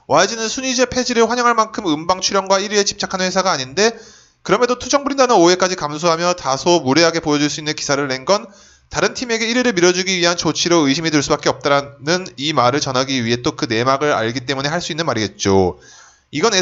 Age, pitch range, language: 20-39, 150-200 Hz, Korean